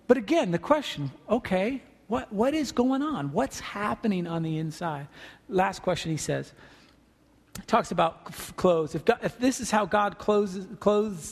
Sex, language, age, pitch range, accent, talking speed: male, English, 40-59, 175-265 Hz, American, 170 wpm